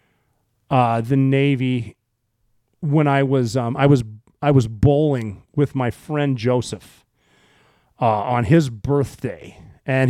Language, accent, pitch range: English, American, 130-170 Hz